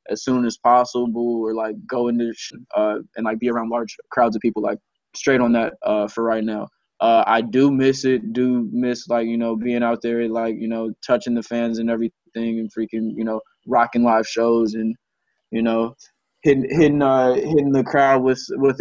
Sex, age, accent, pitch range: male, 20-39, American, 115-130 Hz